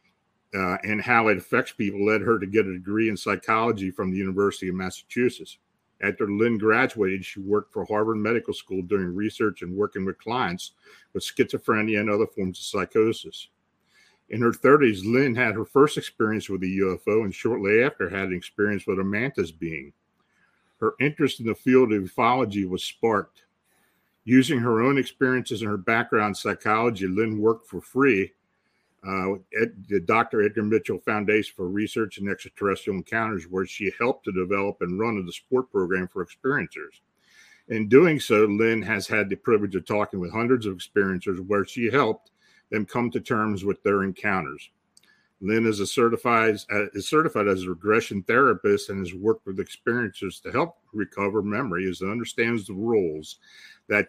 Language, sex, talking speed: English, male, 175 wpm